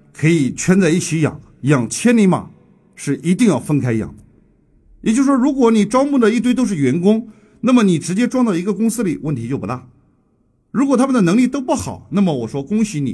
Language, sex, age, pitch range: Chinese, male, 50-69, 130-220 Hz